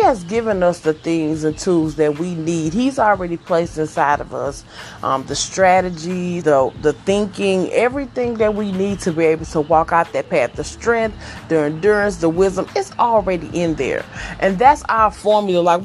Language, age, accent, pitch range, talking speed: English, 30-49, American, 165-210 Hz, 185 wpm